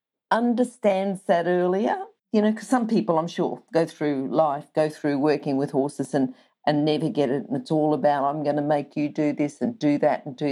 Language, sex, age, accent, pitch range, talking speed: English, female, 50-69, Australian, 150-200 Hz, 220 wpm